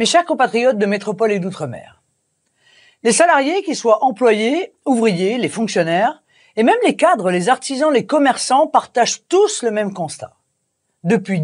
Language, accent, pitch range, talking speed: French, French, 185-250 Hz, 150 wpm